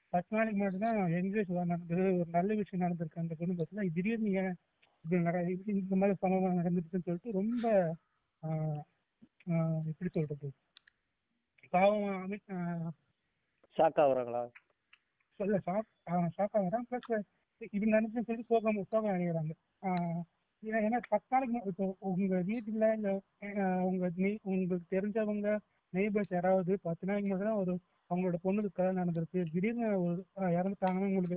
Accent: native